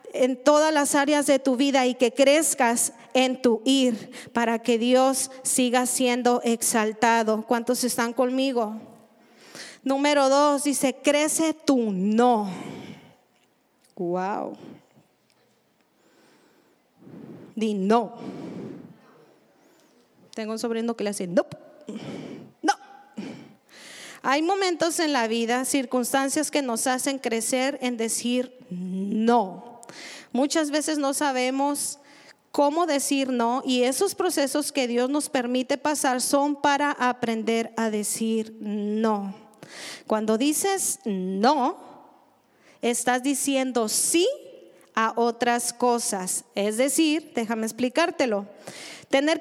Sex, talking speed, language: female, 105 wpm, Spanish